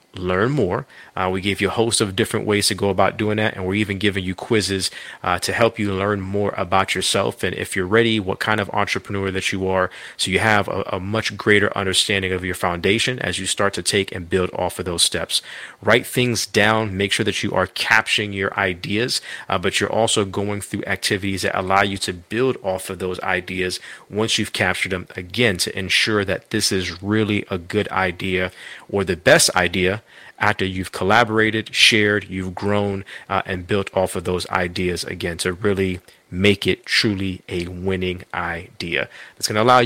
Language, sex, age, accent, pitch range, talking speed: English, male, 30-49, American, 95-110 Hz, 200 wpm